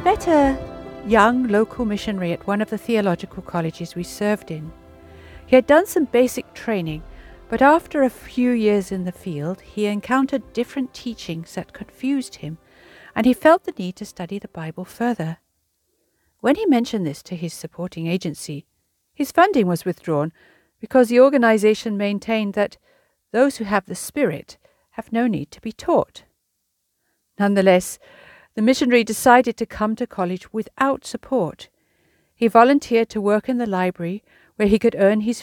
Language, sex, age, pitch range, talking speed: English, female, 60-79, 180-245 Hz, 160 wpm